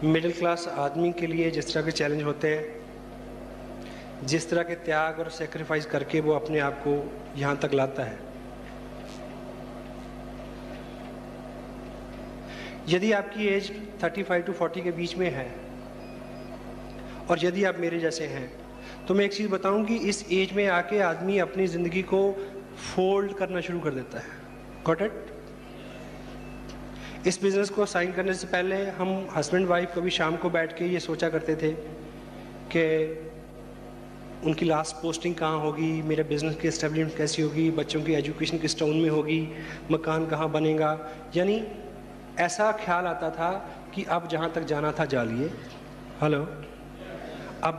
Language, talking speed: Hindi, 150 wpm